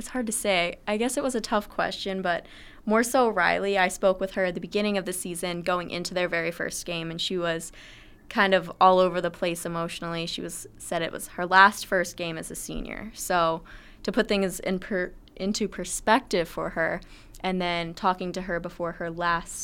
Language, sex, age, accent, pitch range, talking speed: English, female, 20-39, American, 170-195 Hz, 215 wpm